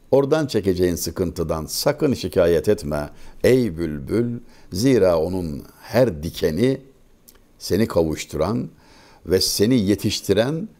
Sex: male